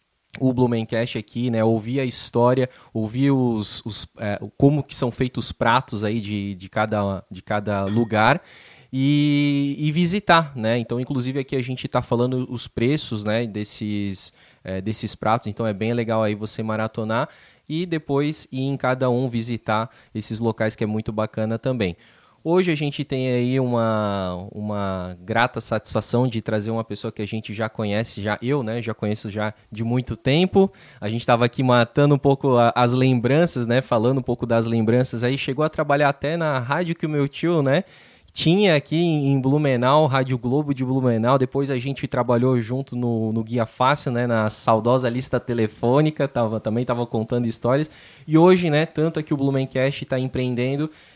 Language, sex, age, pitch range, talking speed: Portuguese, male, 20-39, 110-140 Hz, 180 wpm